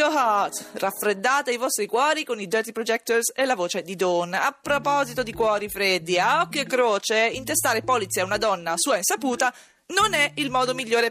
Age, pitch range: 30-49, 175-280 Hz